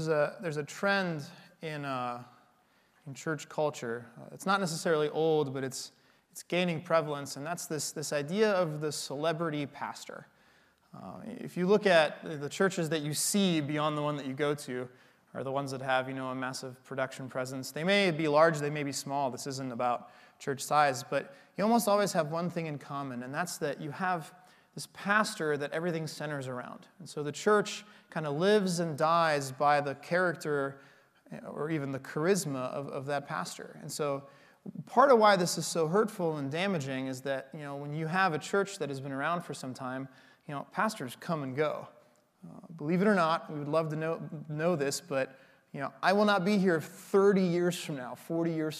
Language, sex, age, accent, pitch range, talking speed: English, male, 20-39, American, 140-175 Hz, 205 wpm